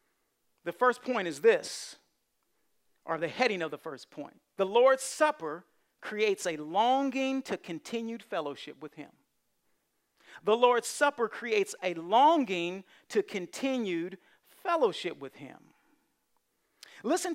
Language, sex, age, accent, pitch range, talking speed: English, male, 50-69, American, 205-290 Hz, 120 wpm